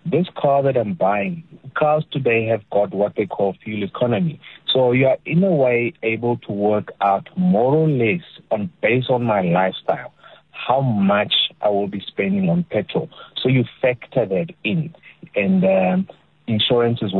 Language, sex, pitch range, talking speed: English, male, 105-170 Hz, 170 wpm